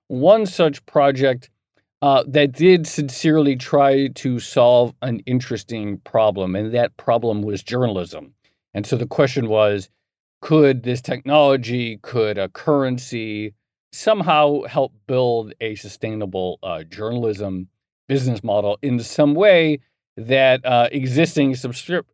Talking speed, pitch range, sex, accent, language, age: 120 wpm, 115-150 Hz, male, American, English, 40-59